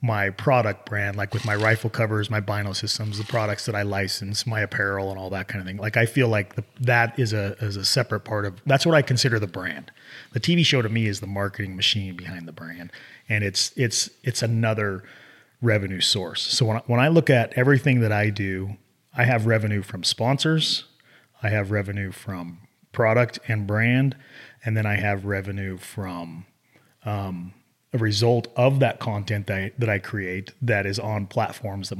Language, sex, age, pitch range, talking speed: English, male, 30-49, 100-125 Hz, 205 wpm